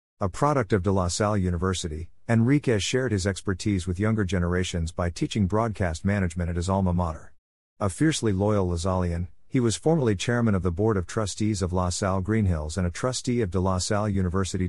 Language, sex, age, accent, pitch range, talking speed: English, male, 50-69, American, 90-110 Hz, 190 wpm